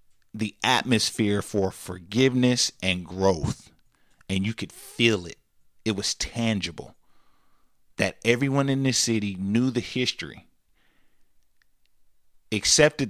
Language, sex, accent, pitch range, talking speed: English, male, American, 90-115 Hz, 105 wpm